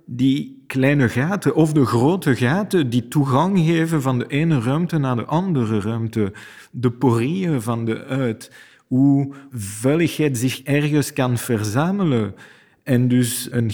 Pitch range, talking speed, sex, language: 110-140 Hz, 140 wpm, male, Dutch